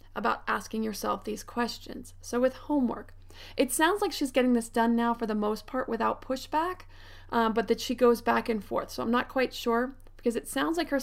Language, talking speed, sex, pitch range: English, 220 wpm, female, 220-265 Hz